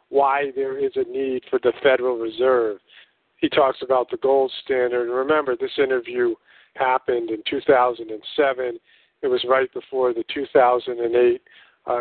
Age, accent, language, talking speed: 50-69, American, English, 145 wpm